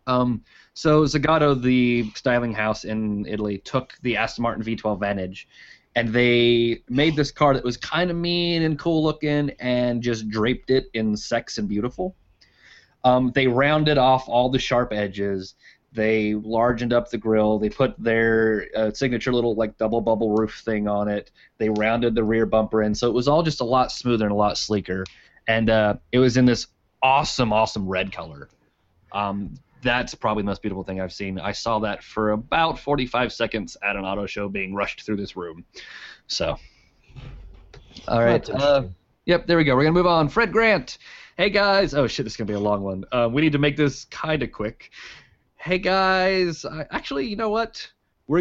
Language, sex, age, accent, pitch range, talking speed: English, male, 20-39, American, 105-140 Hz, 195 wpm